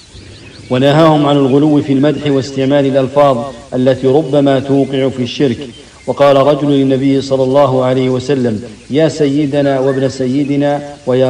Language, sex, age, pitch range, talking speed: English, male, 50-69, 130-145 Hz, 125 wpm